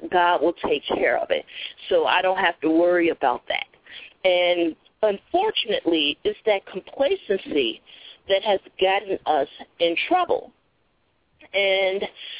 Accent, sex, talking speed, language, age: American, female, 125 wpm, English, 40-59